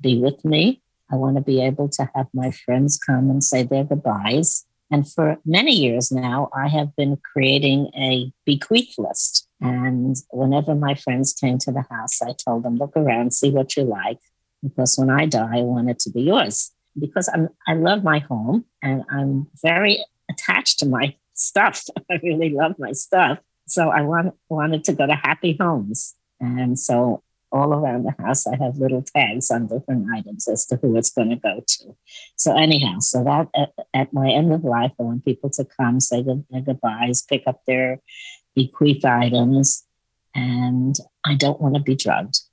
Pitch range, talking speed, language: 125-150 Hz, 190 wpm, English